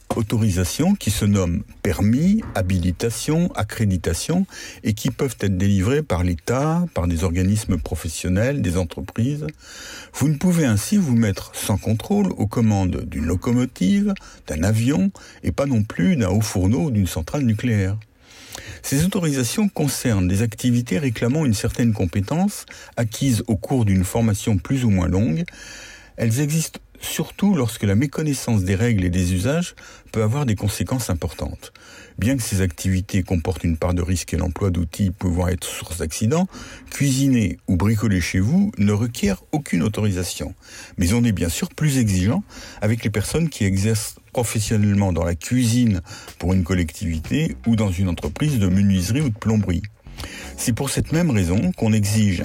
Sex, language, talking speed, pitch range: male, French, 160 wpm, 95-125 Hz